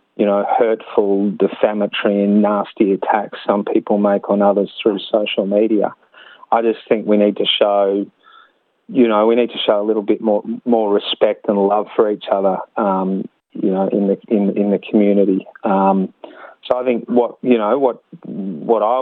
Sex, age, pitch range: male, 30-49, 100-110 Hz